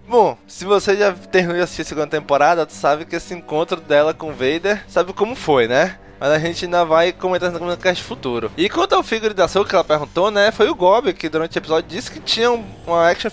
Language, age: Portuguese, 20-39